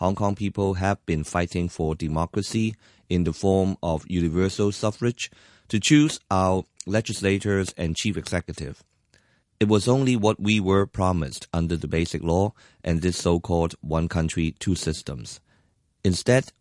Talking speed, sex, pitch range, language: 145 wpm, male, 85-105 Hz, English